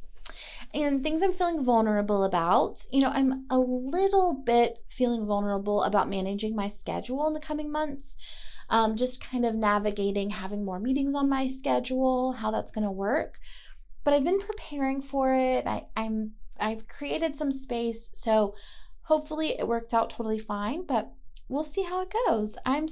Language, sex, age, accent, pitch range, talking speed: English, female, 20-39, American, 210-265 Hz, 175 wpm